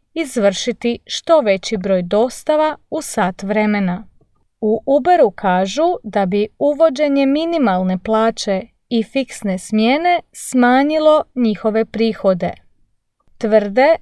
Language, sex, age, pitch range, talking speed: English, female, 30-49, 195-285 Hz, 100 wpm